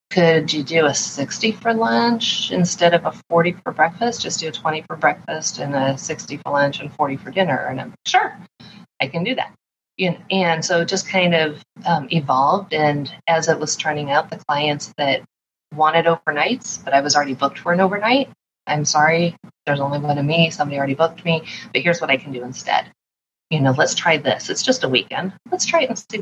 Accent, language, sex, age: American, English, female, 30-49